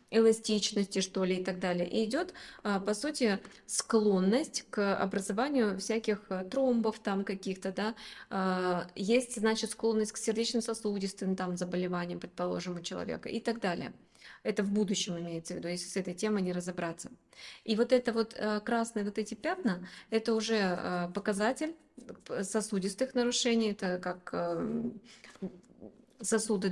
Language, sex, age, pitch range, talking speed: Russian, female, 20-39, 190-225 Hz, 130 wpm